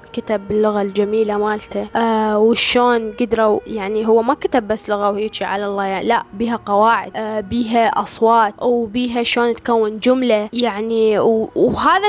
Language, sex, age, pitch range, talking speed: Arabic, female, 10-29, 215-250 Hz, 145 wpm